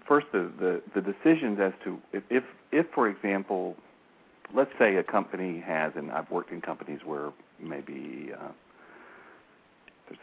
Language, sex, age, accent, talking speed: English, male, 60-79, American, 155 wpm